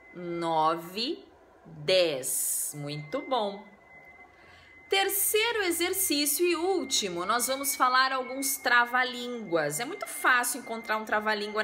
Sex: female